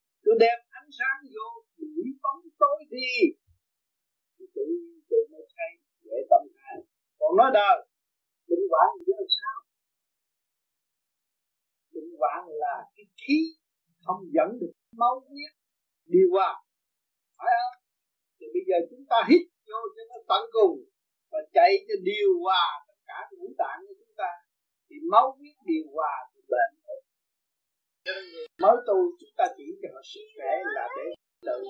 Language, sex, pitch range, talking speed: Vietnamese, male, 265-385 Hz, 155 wpm